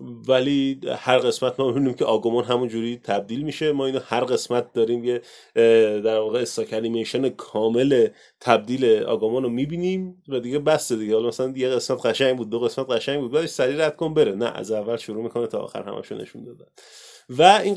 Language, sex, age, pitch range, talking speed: Persian, male, 30-49, 120-165 Hz, 185 wpm